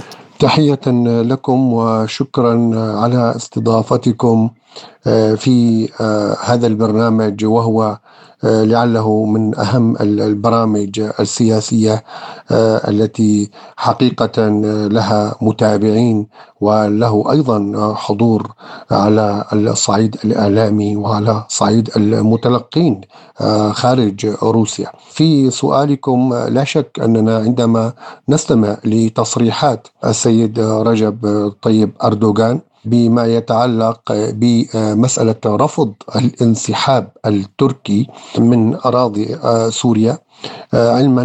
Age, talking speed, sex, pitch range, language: 50-69, 75 wpm, male, 110-125 Hz, Arabic